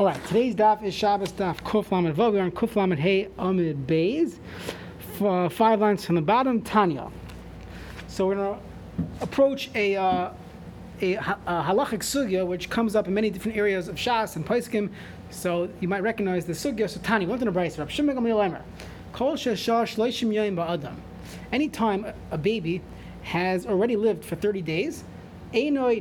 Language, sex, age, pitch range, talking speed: English, male, 30-49, 175-220 Hz, 160 wpm